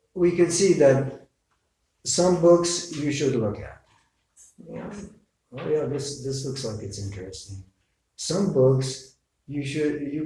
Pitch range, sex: 105-130 Hz, male